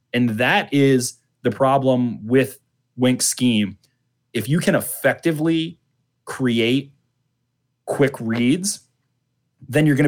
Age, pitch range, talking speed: 30-49, 115-140 Hz, 105 wpm